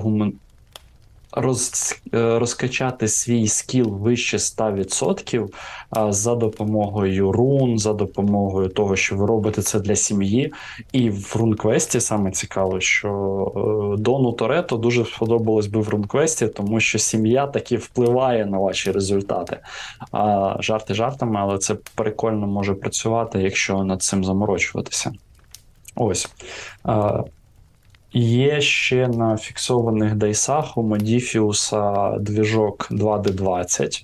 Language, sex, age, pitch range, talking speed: Ukrainian, male, 20-39, 100-115 Hz, 105 wpm